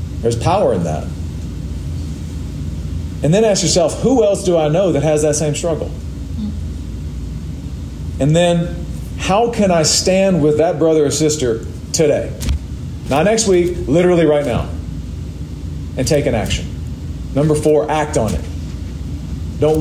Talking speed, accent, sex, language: 140 wpm, American, male, English